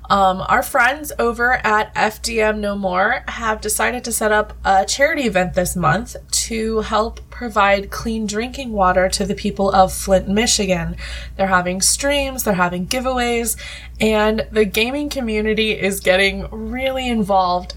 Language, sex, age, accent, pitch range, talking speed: English, female, 20-39, American, 185-240 Hz, 150 wpm